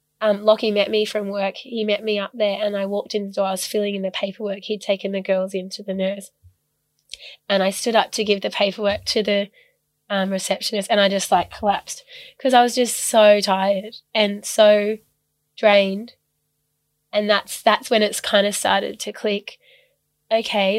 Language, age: English, 20-39